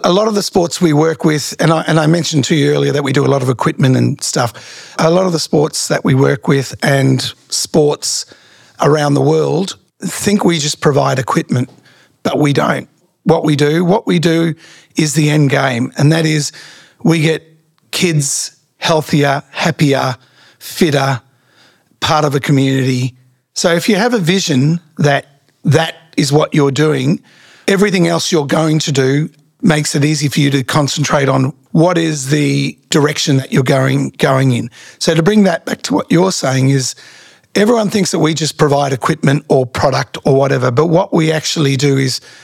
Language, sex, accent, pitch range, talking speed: English, male, Australian, 140-160 Hz, 185 wpm